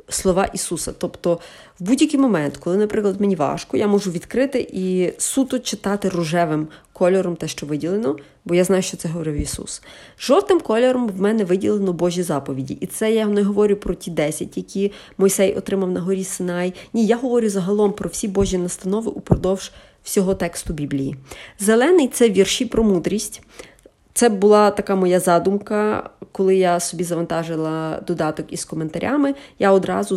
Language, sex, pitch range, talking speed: Ukrainian, female, 165-205 Hz, 160 wpm